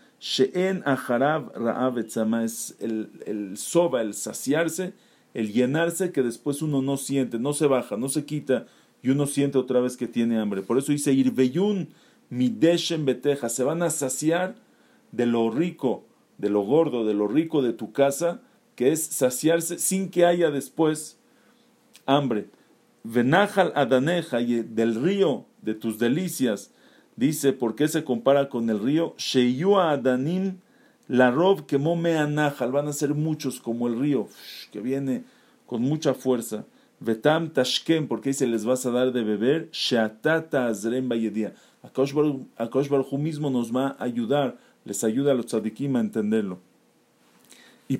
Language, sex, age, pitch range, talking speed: English, male, 50-69, 120-160 Hz, 140 wpm